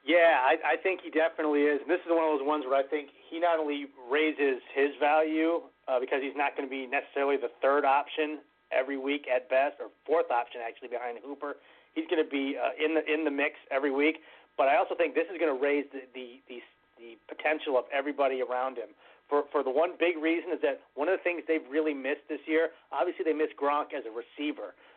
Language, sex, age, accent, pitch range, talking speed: English, male, 30-49, American, 135-160 Hz, 235 wpm